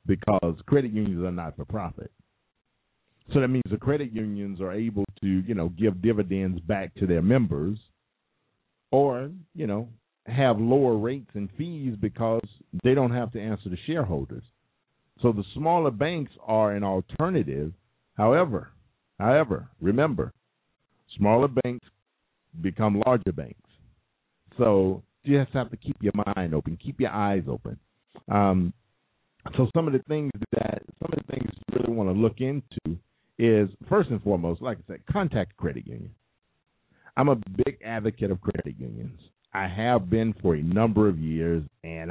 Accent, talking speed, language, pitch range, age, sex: American, 155 wpm, English, 95-120 Hz, 50-69, male